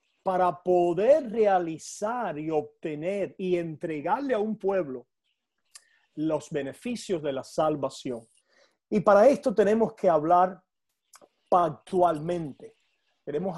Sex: male